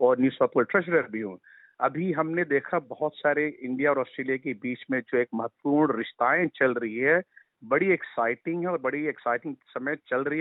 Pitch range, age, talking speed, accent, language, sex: 125-170 Hz, 50-69, 190 wpm, native, Hindi, male